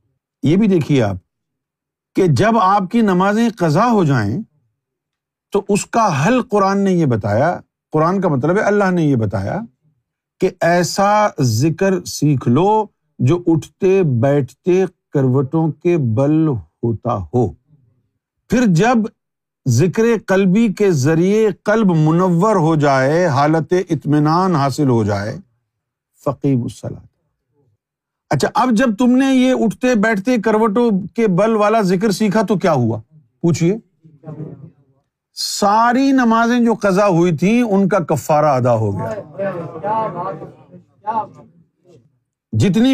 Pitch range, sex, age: 140-210 Hz, male, 50-69